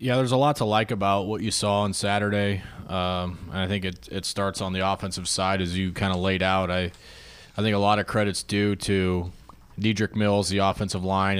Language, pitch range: English, 95-105 Hz